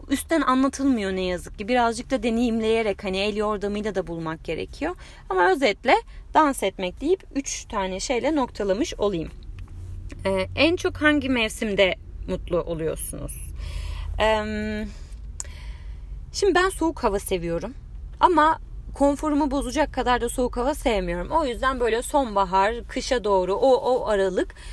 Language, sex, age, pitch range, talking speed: Turkish, female, 30-49, 185-260 Hz, 130 wpm